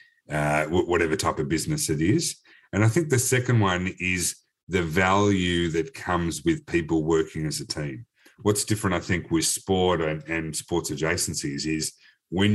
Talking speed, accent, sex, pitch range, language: 170 wpm, Australian, male, 85-110 Hz, English